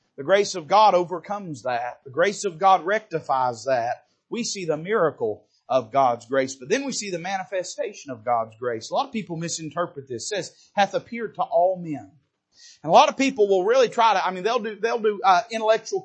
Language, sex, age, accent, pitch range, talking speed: English, male, 40-59, American, 180-235 Hz, 215 wpm